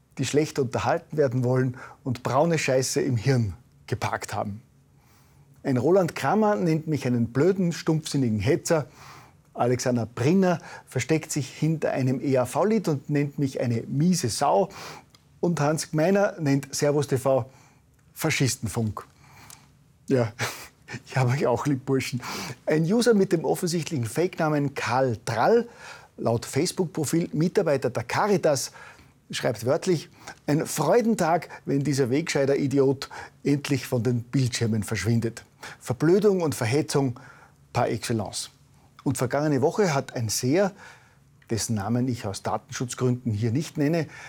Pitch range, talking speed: 125-155 Hz, 125 wpm